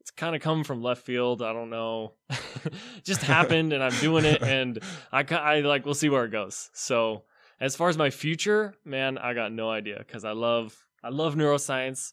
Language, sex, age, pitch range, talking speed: English, male, 10-29, 110-135 Hz, 210 wpm